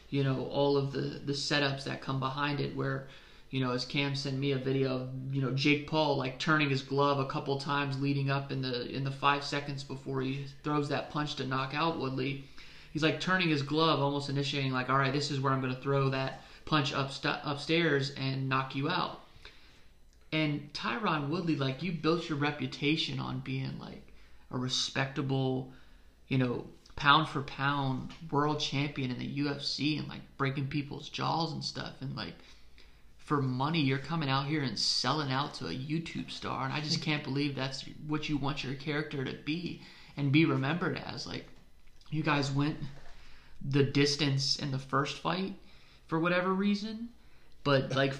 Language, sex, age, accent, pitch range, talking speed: English, male, 30-49, American, 135-155 Hz, 185 wpm